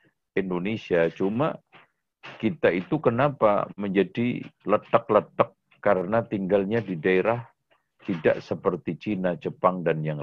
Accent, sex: native, male